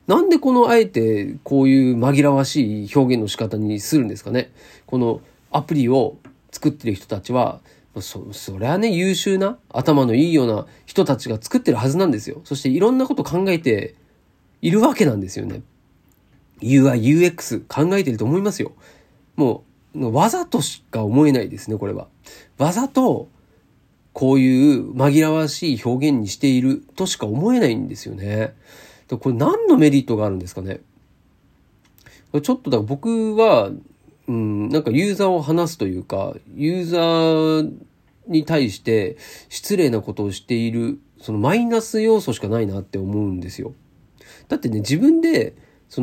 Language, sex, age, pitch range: Japanese, male, 40-59, 115-190 Hz